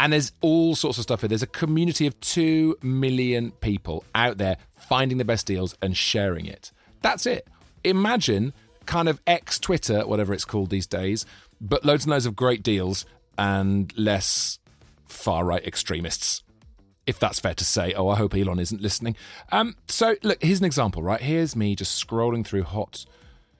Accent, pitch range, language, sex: British, 95-135 Hz, English, male